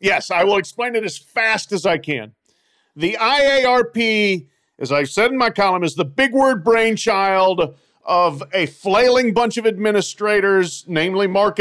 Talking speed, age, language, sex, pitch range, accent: 160 wpm, 40-59, English, male, 175-235 Hz, American